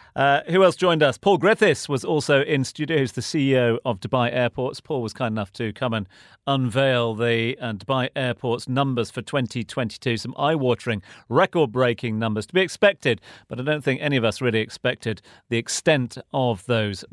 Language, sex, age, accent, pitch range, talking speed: English, male, 40-59, British, 110-150 Hz, 180 wpm